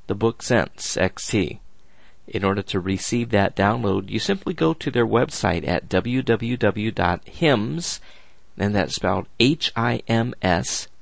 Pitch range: 95-120 Hz